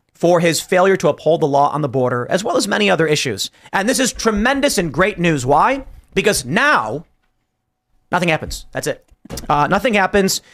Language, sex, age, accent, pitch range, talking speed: English, male, 40-59, American, 150-195 Hz, 190 wpm